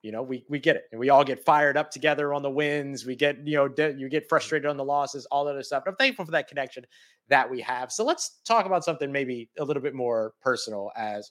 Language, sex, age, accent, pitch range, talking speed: English, male, 30-49, American, 135-165 Hz, 265 wpm